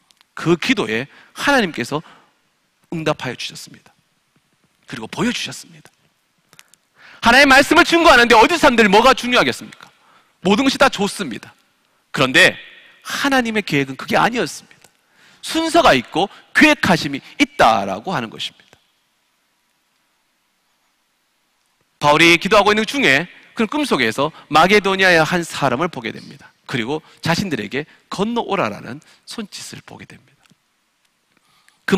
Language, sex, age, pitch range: Korean, male, 40-59, 150-240 Hz